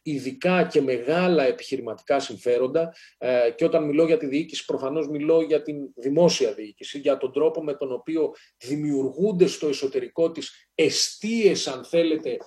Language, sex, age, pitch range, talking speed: Greek, male, 40-59, 145-185 Hz, 150 wpm